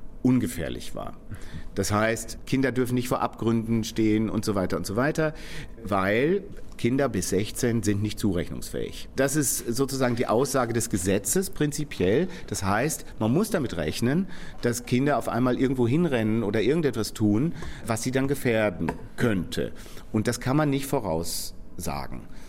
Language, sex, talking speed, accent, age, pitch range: German, male, 150 wpm, German, 40-59, 100-125 Hz